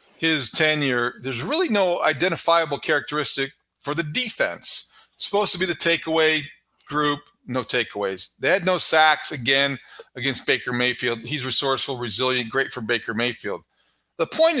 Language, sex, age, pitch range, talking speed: English, male, 40-59, 135-175 Hz, 150 wpm